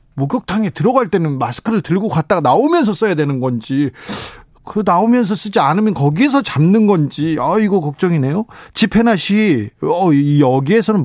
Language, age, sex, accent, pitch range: Korean, 40-59, male, native, 130-190 Hz